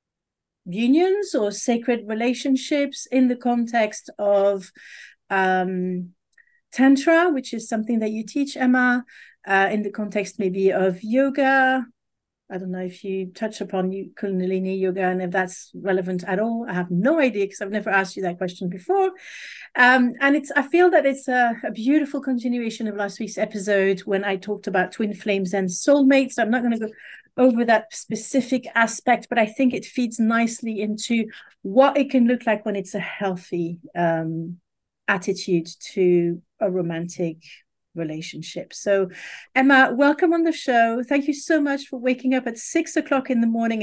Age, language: 40-59, English